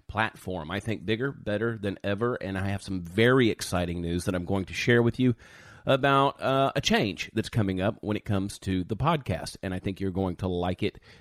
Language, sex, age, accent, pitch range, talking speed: English, male, 40-59, American, 95-120 Hz, 225 wpm